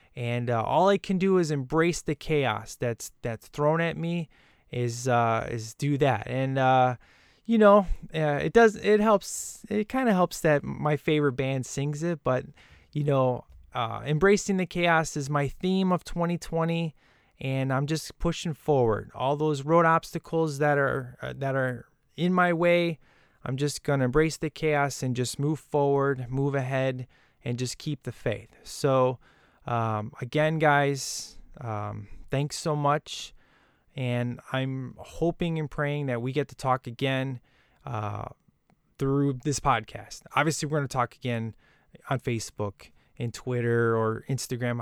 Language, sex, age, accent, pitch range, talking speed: English, male, 20-39, American, 120-155 Hz, 160 wpm